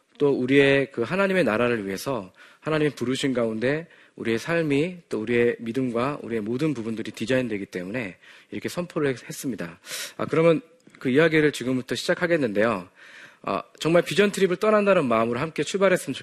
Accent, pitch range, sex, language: native, 115-175 Hz, male, Korean